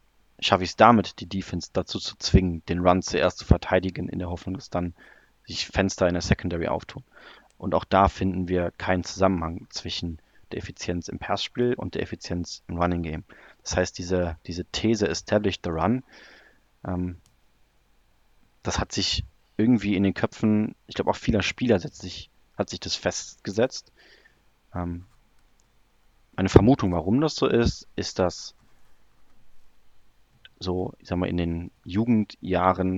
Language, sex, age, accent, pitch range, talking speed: German, male, 30-49, German, 90-105 Hz, 155 wpm